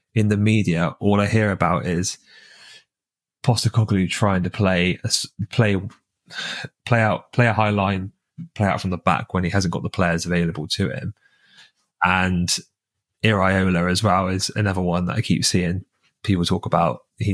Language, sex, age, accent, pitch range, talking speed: English, male, 20-39, British, 90-110 Hz, 170 wpm